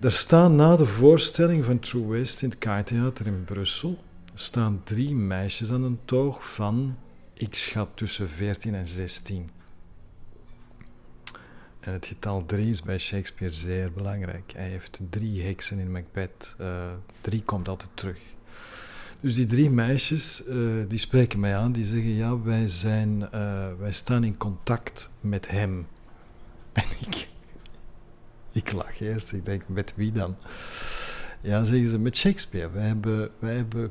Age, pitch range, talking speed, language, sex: 50-69, 95-120 Hz, 155 wpm, Dutch, male